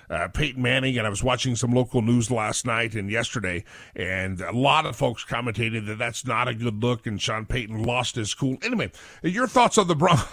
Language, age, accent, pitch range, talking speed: English, 50-69, American, 110-145 Hz, 220 wpm